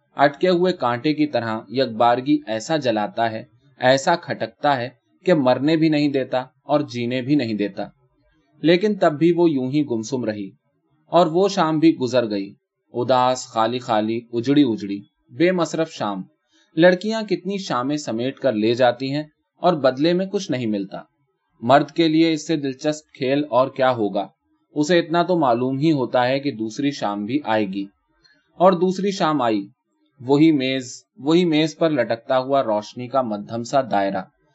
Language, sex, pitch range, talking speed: Urdu, male, 120-165 Hz, 130 wpm